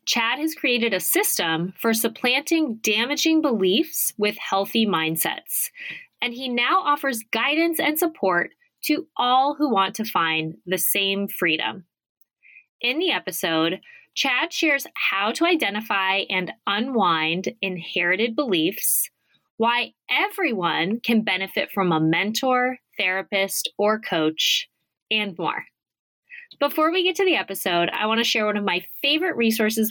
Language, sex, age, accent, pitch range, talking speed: English, female, 20-39, American, 185-305 Hz, 135 wpm